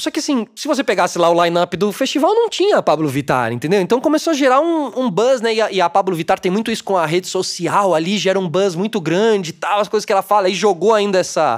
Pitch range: 175-235 Hz